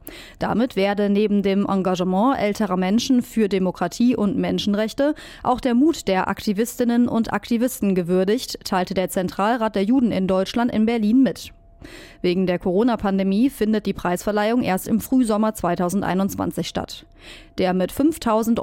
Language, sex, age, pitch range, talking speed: German, female, 30-49, 195-245 Hz, 140 wpm